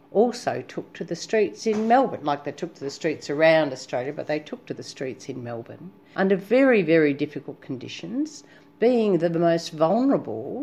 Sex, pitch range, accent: female, 145-210 Hz, Australian